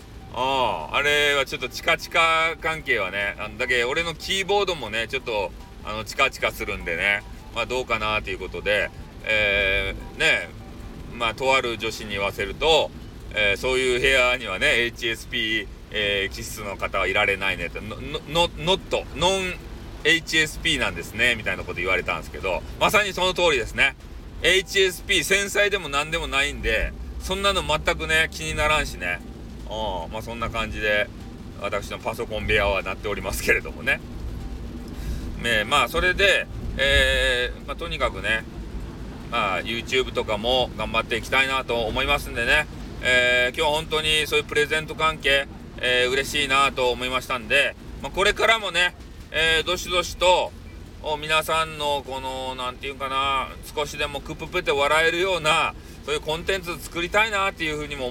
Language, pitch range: Japanese, 110-160 Hz